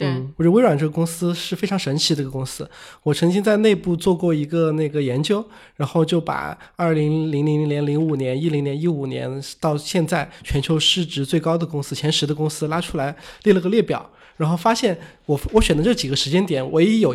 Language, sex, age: Chinese, male, 20-39